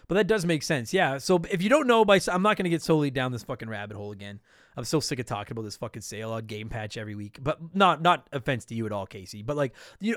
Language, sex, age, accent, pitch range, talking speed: English, male, 30-49, American, 130-200 Hz, 290 wpm